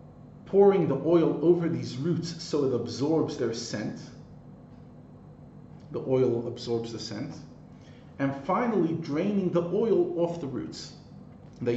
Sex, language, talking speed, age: male, English, 130 wpm, 40-59